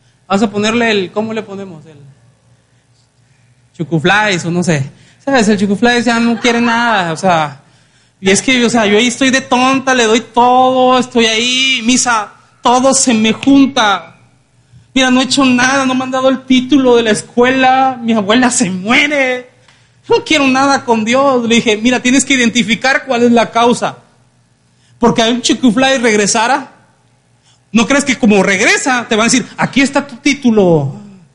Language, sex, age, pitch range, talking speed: Spanish, male, 30-49, 215-265 Hz, 180 wpm